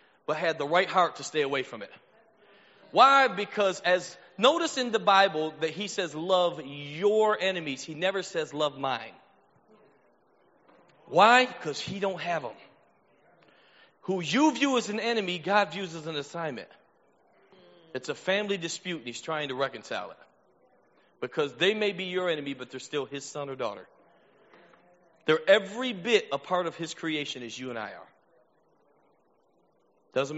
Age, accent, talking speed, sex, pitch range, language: 40-59, American, 160 wpm, male, 135-190 Hz, English